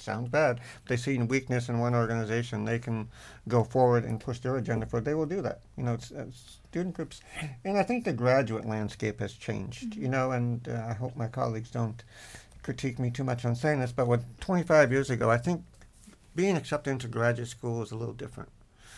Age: 60-79